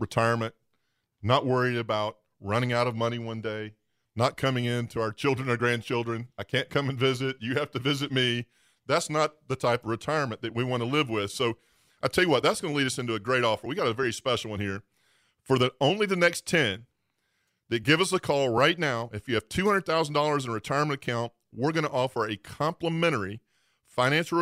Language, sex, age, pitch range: English, male, 40-59, 115-145 Hz